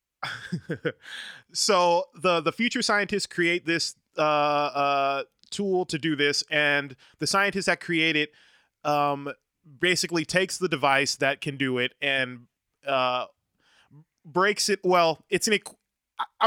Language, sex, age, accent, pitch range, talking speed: English, male, 20-39, American, 140-175 Hz, 140 wpm